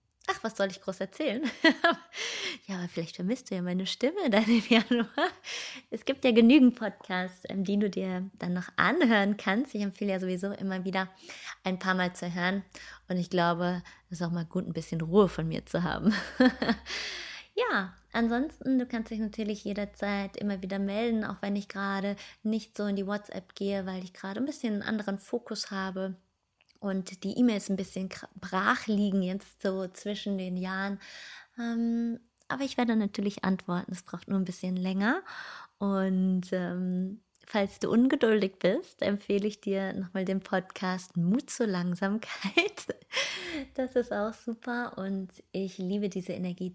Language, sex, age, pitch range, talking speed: German, female, 20-39, 185-230 Hz, 165 wpm